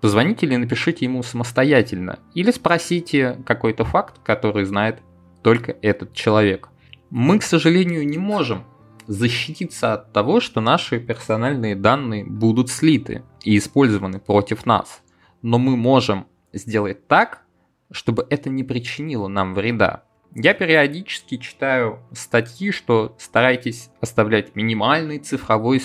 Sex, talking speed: male, 120 wpm